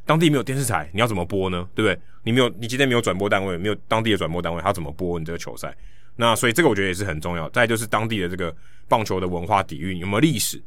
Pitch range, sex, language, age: 85-115 Hz, male, Chinese, 20-39